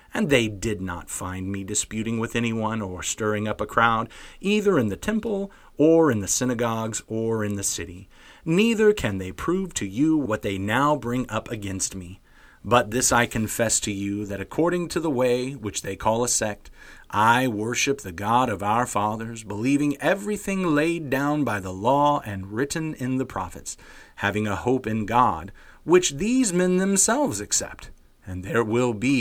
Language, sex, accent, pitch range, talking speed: English, male, American, 100-140 Hz, 180 wpm